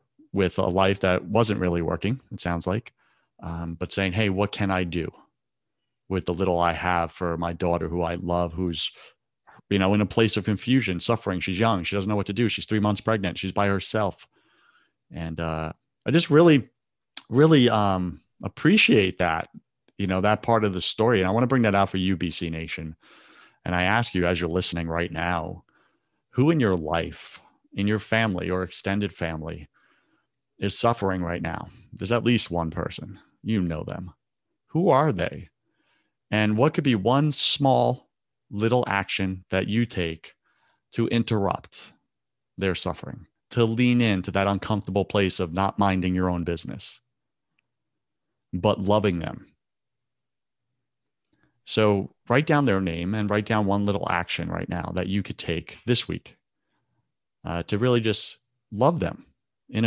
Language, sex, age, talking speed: English, male, 30-49, 170 wpm